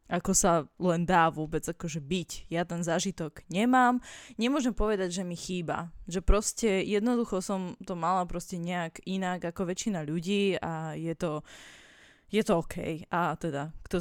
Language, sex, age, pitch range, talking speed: English, female, 20-39, 165-200 Hz, 160 wpm